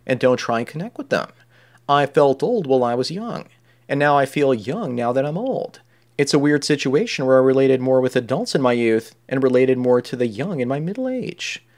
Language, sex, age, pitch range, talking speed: English, male, 30-49, 125-145 Hz, 235 wpm